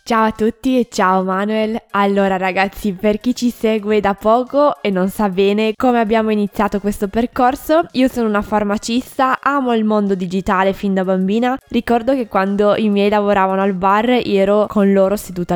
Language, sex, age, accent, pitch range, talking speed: Italian, female, 20-39, native, 185-220 Hz, 180 wpm